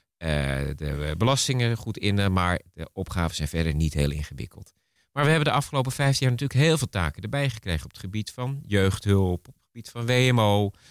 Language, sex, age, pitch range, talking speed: Dutch, male, 30-49, 85-115 Hz, 200 wpm